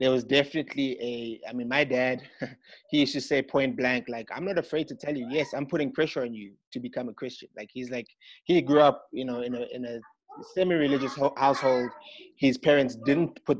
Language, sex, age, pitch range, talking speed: English, male, 20-39, 125-145 Hz, 215 wpm